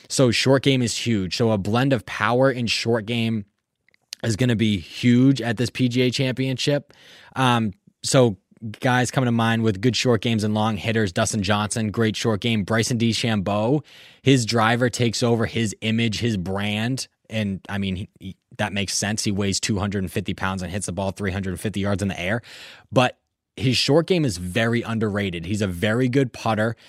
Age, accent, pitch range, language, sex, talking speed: 20-39, American, 105-125 Hz, English, male, 180 wpm